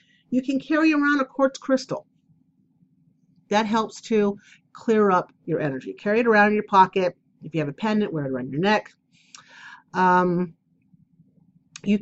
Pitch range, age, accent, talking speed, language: 160-230 Hz, 50-69, American, 160 wpm, English